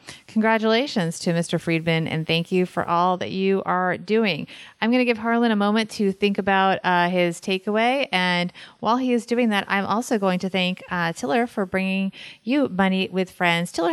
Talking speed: 200 wpm